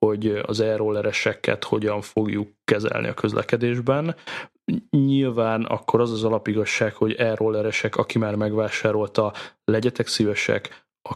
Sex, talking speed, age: male, 115 wpm, 20-39